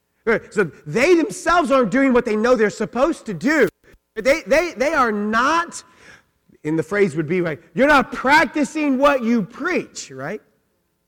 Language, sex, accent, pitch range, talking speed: English, male, American, 210-270 Hz, 160 wpm